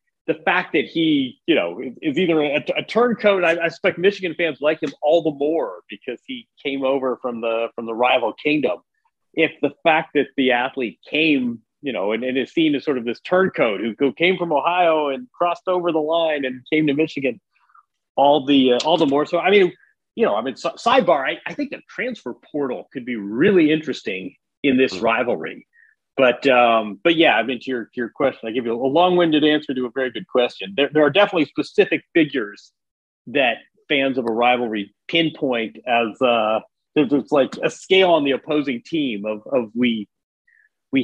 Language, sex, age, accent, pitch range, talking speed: English, male, 40-59, American, 125-170 Hz, 200 wpm